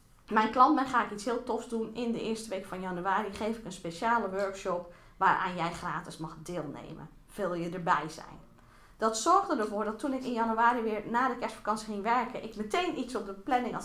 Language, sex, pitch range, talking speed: Dutch, female, 195-255 Hz, 210 wpm